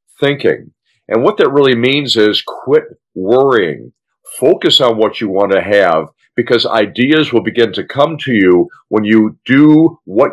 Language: English